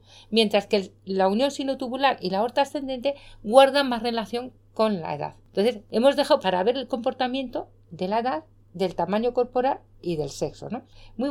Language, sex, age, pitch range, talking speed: Spanish, female, 40-59, 185-250 Hz, 175 wpm